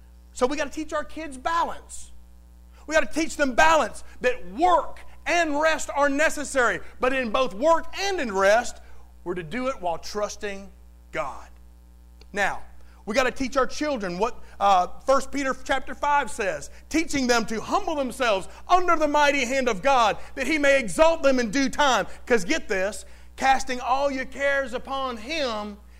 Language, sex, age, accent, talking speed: English, male, 40-59, American, 175 wpm